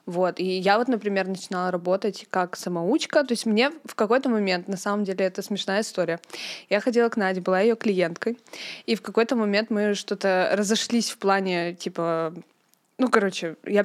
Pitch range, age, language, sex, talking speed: 180-220 Hz, 20-39, Russian, female, 180 wpm